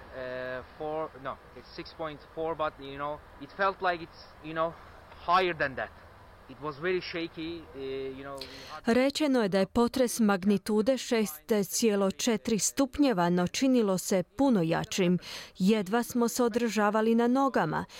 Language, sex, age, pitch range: Croatian, female, 30-49, 180-240 Hz